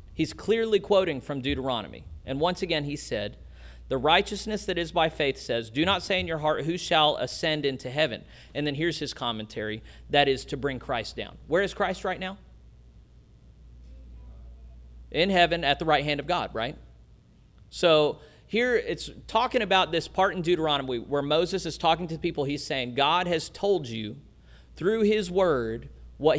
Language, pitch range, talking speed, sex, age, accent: English, 130-190 Hz, 175 wpm, male, 40-59, American